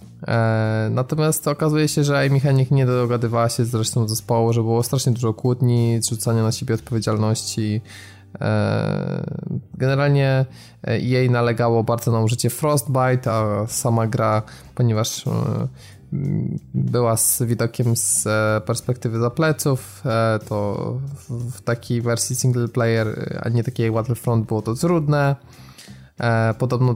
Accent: native